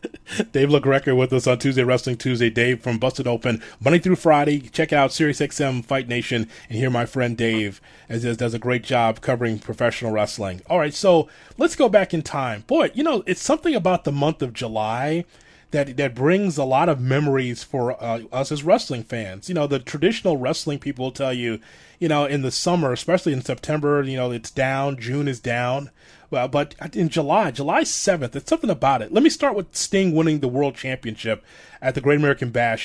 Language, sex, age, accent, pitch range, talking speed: English, male, 30-49, American, 120-155 Hz, 205 wpm